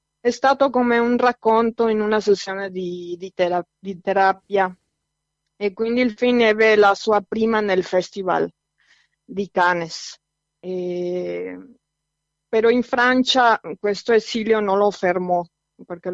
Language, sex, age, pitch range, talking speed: Italian, female, 20-39, 175-205 Hz, 125 wpm